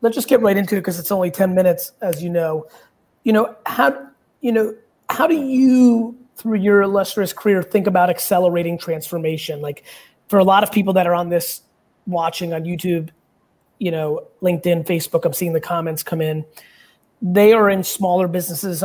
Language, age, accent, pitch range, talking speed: English, 30-49, American, 170-195 Hz, 185 wpm